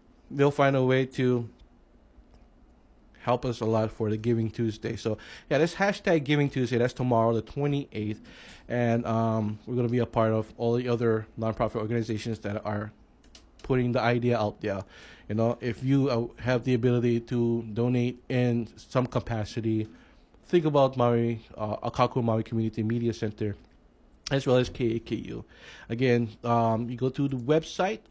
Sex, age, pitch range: male, 20-39, 115-135 Hz